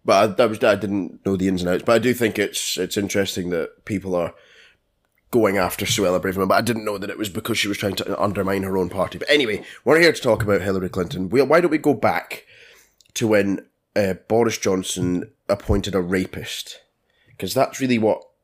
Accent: British